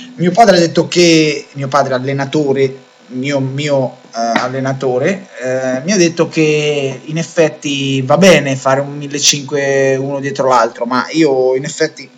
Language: Italian